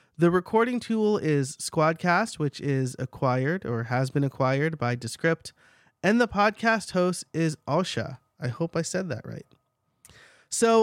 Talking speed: 150 wpm